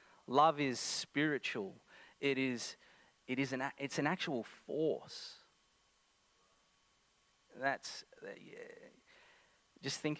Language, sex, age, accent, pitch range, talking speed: English, male, 30-49, Australian, 135-185 Hz, 95 wpm